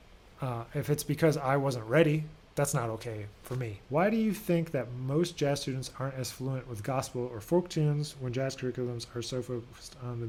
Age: 30-49